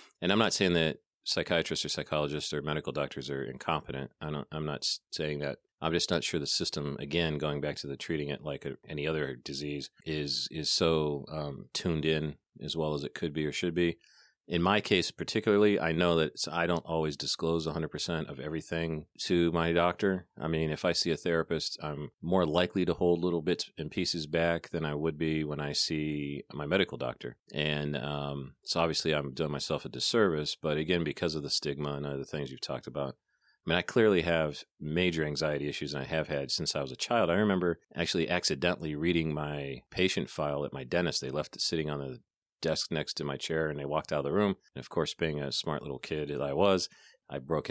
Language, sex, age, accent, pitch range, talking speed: English, male, 40-59, American, 75-85 Hz, 220 wpm